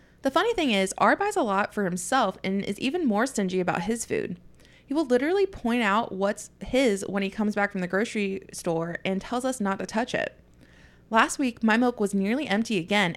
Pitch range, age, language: 190-245 Hz, 20-39, English